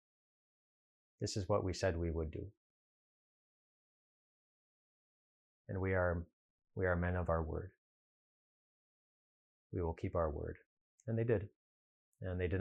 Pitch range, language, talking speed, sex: 85-110 Hz, English, 135 wpm, male